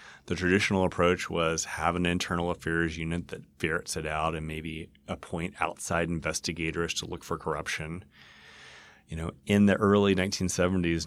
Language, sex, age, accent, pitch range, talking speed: English, male, 30-49, American, 85-110 Hz, 150 wpm